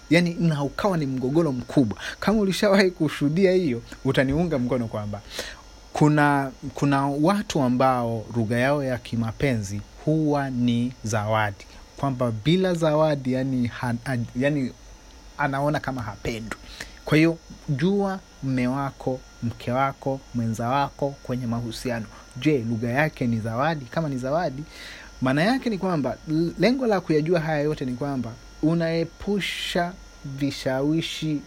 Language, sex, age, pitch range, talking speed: Swahili, male, 30-49, 120-155 Hz, 125 wpm